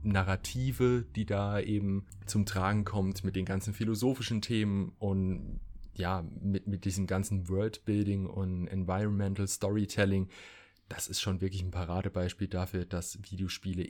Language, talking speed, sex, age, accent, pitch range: German, 135 wpm, male, 30-49, German, 95-115 Hz